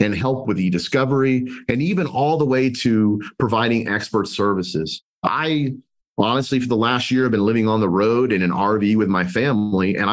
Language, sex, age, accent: English, male, 30-49, American